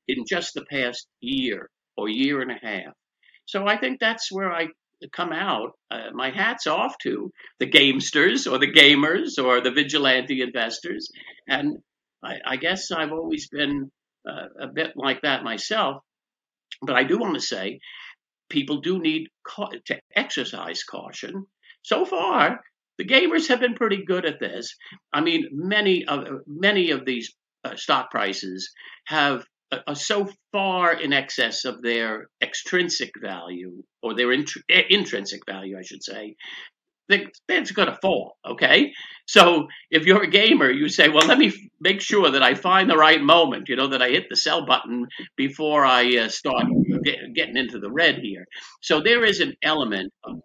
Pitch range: 130-210 Hz